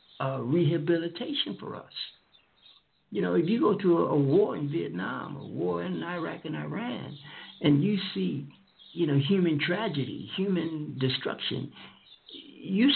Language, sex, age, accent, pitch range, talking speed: English, male, 60-79, American, 145-190 Hz, 145 wpm